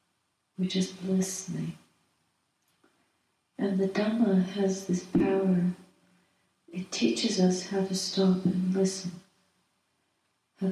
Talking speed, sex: 100 wpm, female